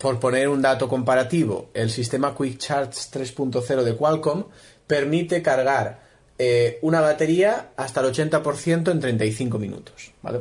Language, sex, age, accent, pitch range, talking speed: Spanish, male, 30-49, Spanish, 125-165 Hz, 140 wpm